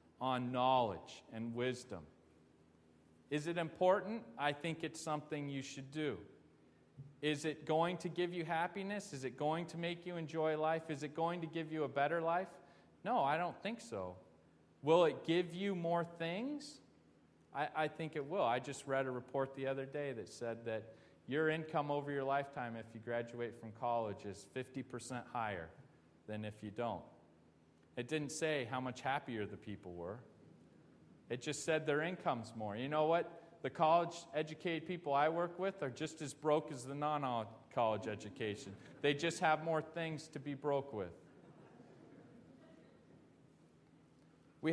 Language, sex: English, male